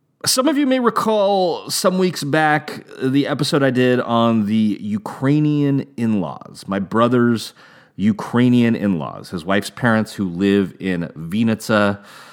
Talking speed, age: 130 wpm, 30-49